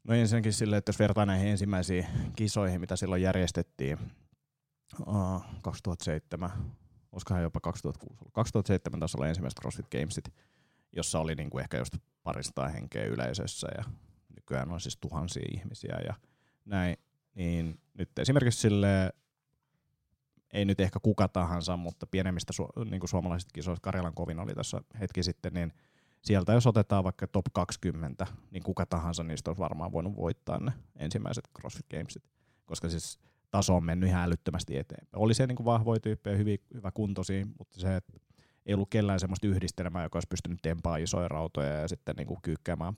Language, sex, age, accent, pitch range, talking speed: Finnish, male, 30-49, native, 90-110 Hz, 155 wpm